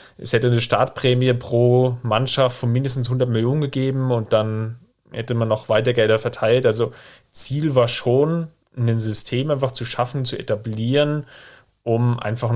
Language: German